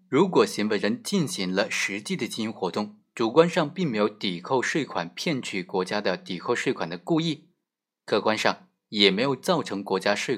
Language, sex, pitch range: Chinese, male, 105-170 Hz